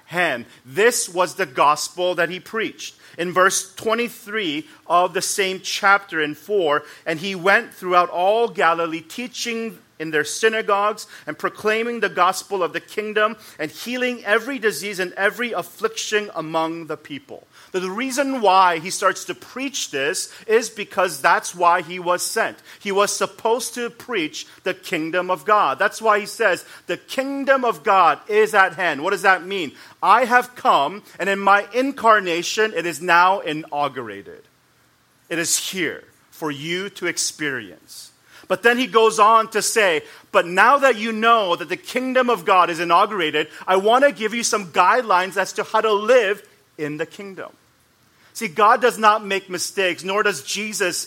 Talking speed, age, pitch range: 170 wpm, 40-59, 175-225 Hz